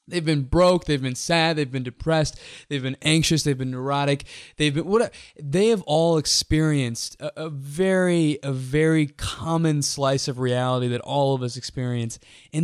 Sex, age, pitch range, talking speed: male, 20-39, 135-165 Hz, 175 wpm